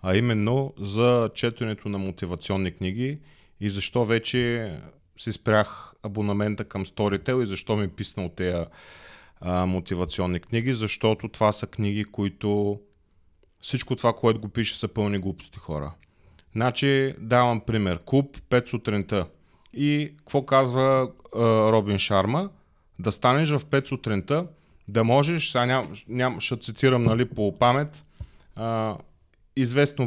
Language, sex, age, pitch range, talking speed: Bulgarian, male, 30-49, 95-125 Hz, 130 wpm